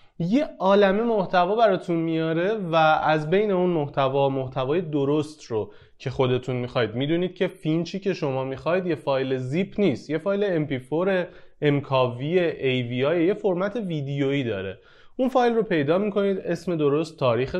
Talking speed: 150 wpm